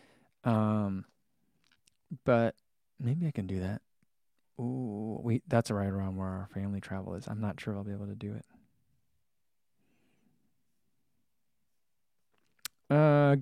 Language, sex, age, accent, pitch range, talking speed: English, male, 20-39, American, 105-155 Hz, 115 wpm